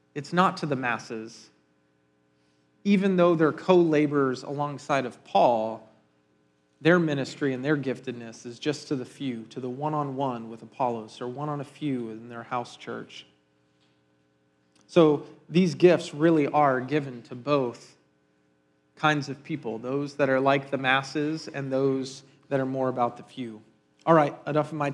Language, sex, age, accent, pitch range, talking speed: English, male, 40-59, American, 115-160 Hz, 150 wpm